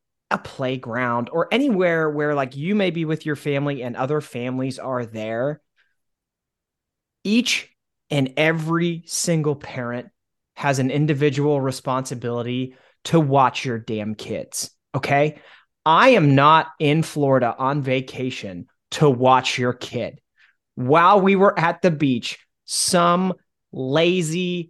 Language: English